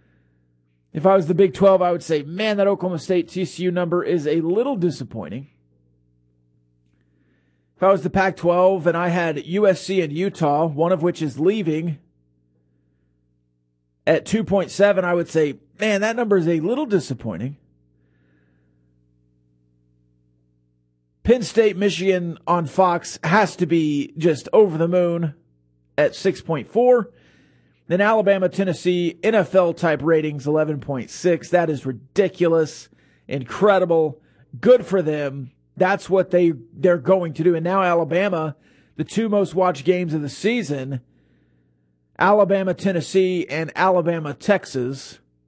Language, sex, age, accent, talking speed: English, male, 40-59, American, 125 wpm